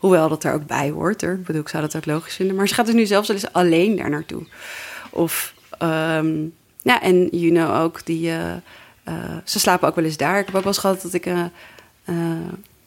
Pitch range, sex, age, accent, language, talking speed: 170-210 Hz, female, 30-49, Dutch, Dutch, 240 wpm